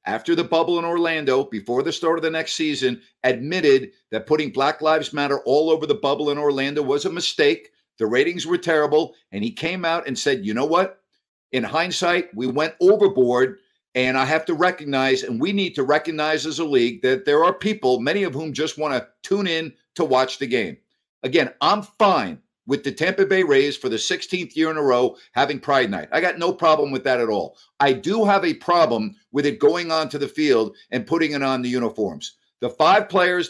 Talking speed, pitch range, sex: 215 wpm, 140-180 Hz, male